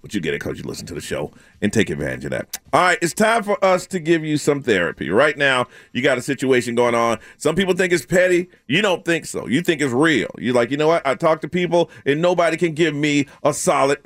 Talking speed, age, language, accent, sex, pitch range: 270 wpm, 40-59, English, American, male, 125-175 Hz